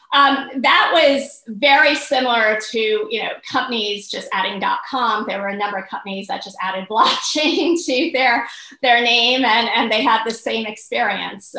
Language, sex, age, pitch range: English, female, 30-49, 205-260 Hz